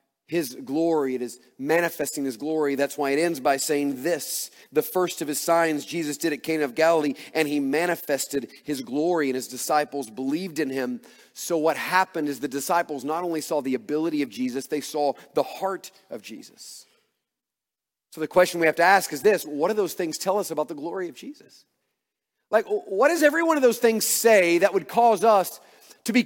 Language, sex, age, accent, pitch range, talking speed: English, male, 40-59, American, 150-220 Hz, 205 wpm